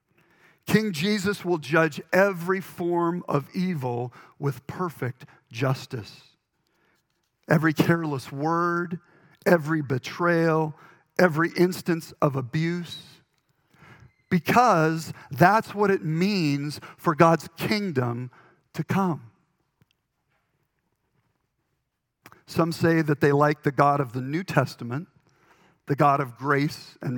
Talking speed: 100 wpm